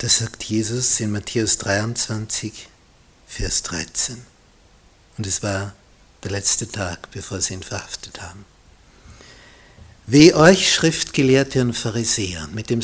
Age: 60-79